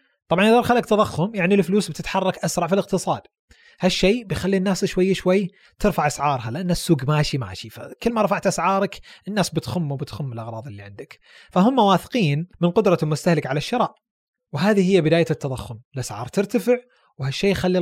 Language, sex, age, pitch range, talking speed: Arabic, male, 30-49, 150-205 Hz, 160 wpm